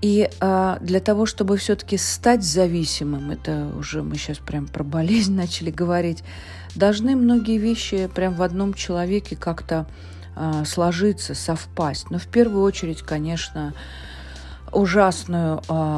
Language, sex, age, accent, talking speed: Russian, female, 40-59, native, 120 wpm